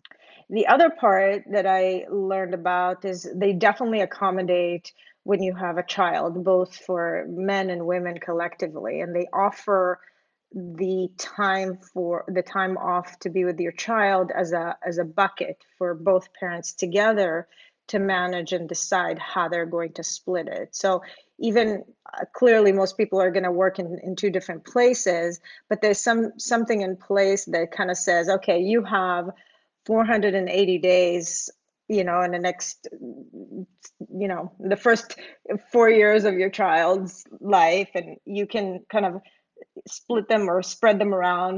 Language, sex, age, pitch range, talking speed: English, female, 30-49, 180-200 Hz, 160 wpm